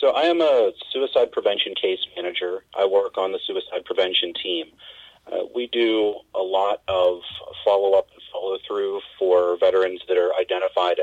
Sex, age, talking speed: male, 40-59, 160 wpm